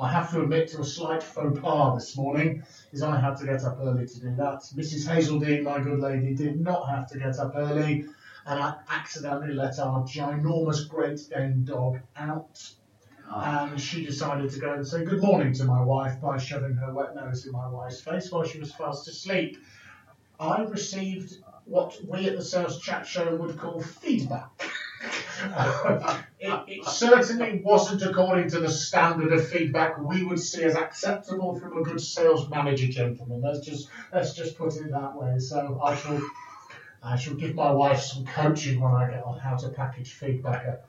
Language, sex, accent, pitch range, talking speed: English, male, British, 135-170 Hz, 190 wpm